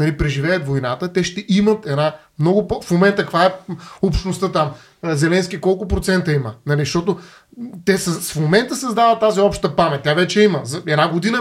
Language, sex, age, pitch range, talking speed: Bulgarian, male, 30-49, 170-215 Hz, 170 wpm